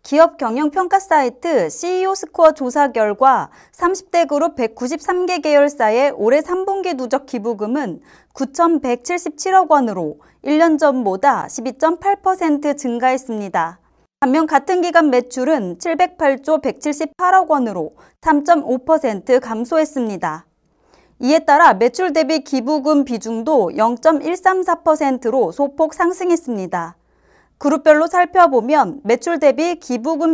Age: 30-49